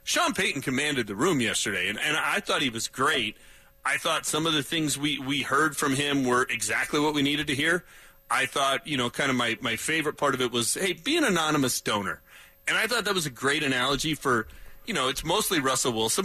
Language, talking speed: English, 235 wpm